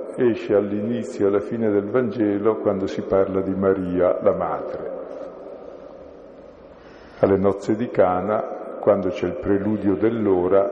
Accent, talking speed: native, 130 wpm